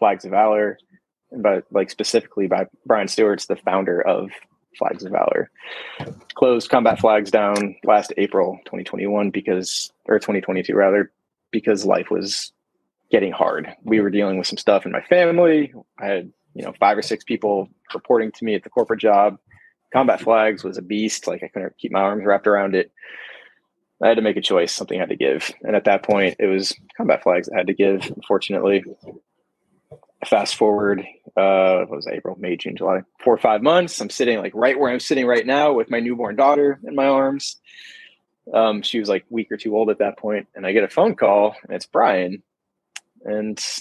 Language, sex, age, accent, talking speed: English, male, 20-39, American, 200 wpm